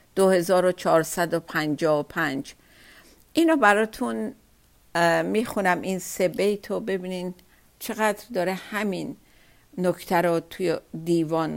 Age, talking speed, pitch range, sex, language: 50-69, 80 wpm, 165-200 Hz, female, Persian